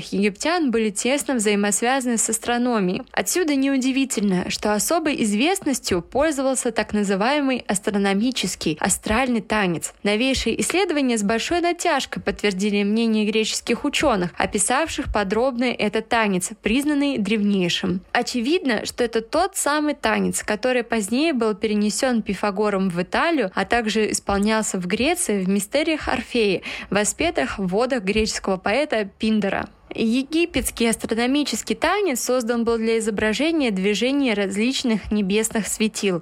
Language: Russian